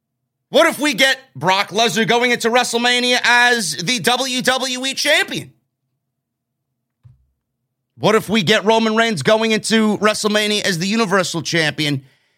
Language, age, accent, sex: English, 30-49, American, male